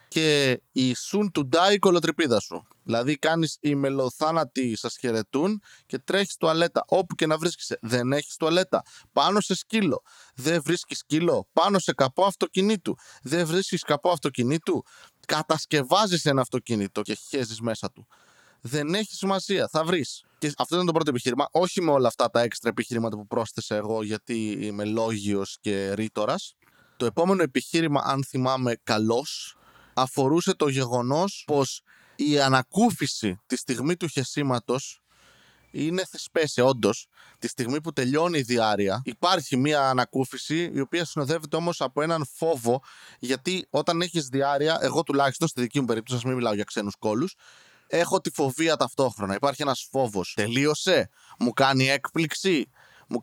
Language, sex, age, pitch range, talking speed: Greek, male, 20-39, 125-170 Hz, 145 wpm